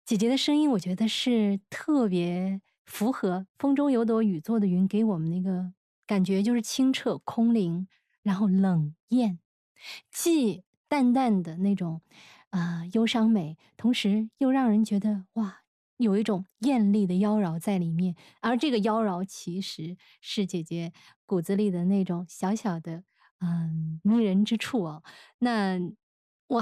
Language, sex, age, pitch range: Chinese, female, 20-39, 185-230 Hz